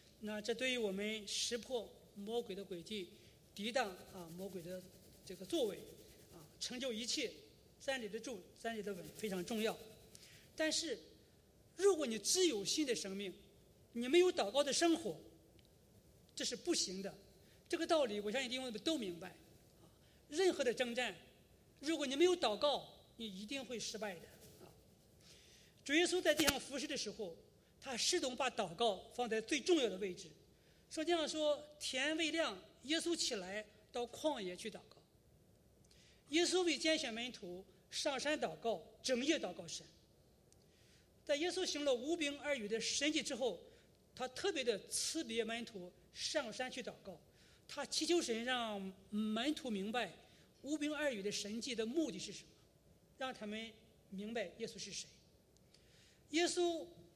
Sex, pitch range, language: male, 210-305 Hz, English